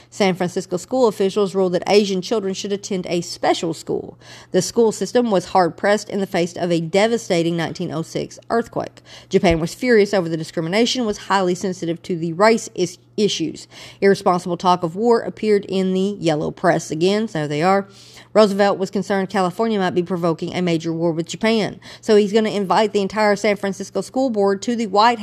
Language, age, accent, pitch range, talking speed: English, 50-69, American, 170-210 Hz, 195 wpm